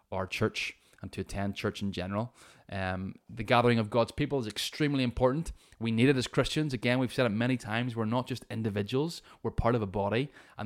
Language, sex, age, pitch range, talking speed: English, male, 20-39, 105-135 Hz, 215 wpm